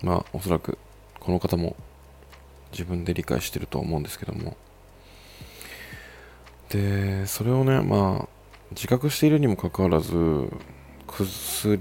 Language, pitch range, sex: Japanese, 70-100 Hz, male